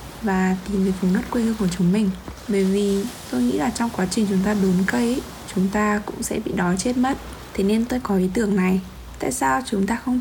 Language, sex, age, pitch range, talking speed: Vietnamese, female, 20-39, 190-245 Hz, 245 wpm